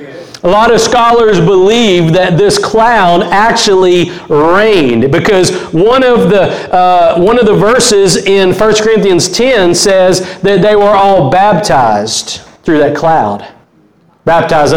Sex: male